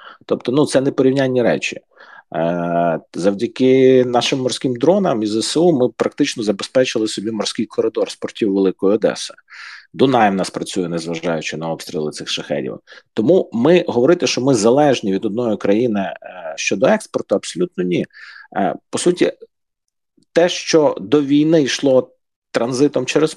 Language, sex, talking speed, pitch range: Ukrainian, male, 135 wpm, 105-145 Hz